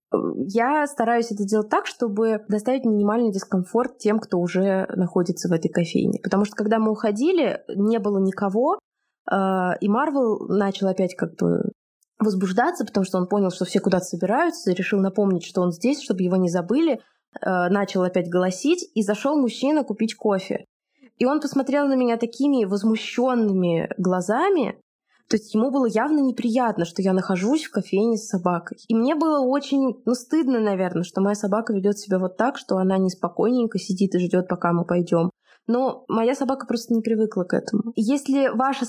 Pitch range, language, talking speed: 185-240 Hz, Russian, 175 wpm